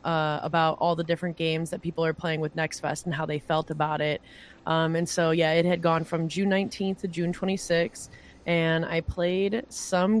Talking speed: 210 wpm